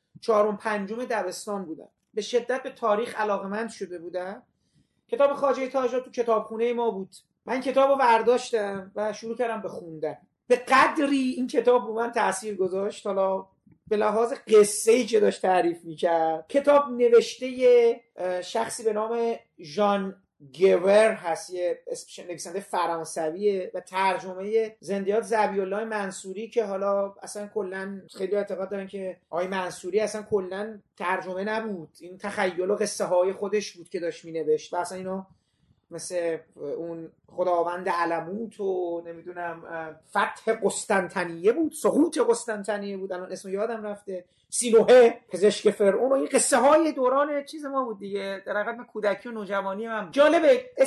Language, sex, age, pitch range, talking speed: Persian, male, 40-59, 190-240 Hz, 145 wpm